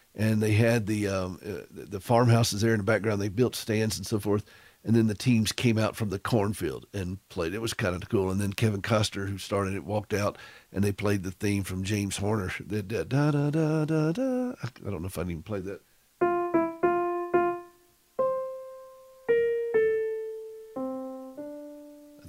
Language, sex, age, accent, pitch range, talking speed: English, male, 50-69, American, 105-145 Hz, 185 wpm